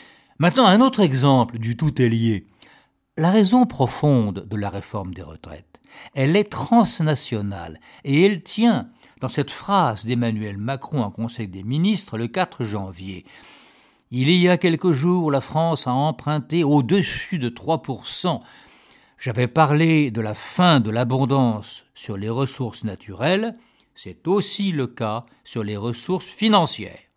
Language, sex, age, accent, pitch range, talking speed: French, male, 50-69, French, 115-175 Hz, 145 wpm